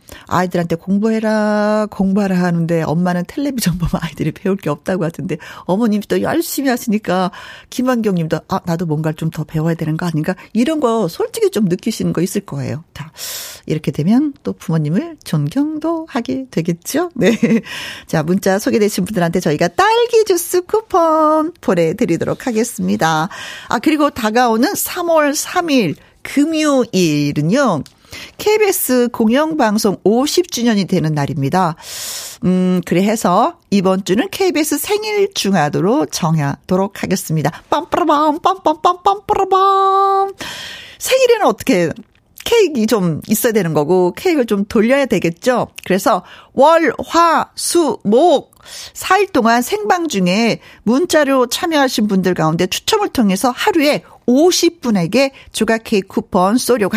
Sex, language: female, Korean